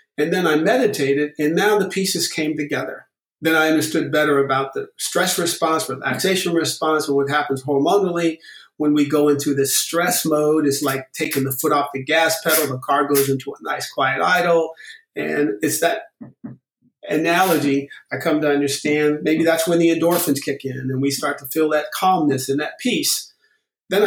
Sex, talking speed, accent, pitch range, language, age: male, 185 wpm, American, 140-170 Hz, English, 50-69